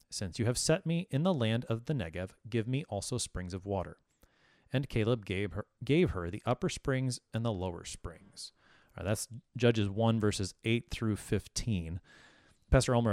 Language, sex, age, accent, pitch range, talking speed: English, male, 30-49, American, 95-120 Hz, 175 wpm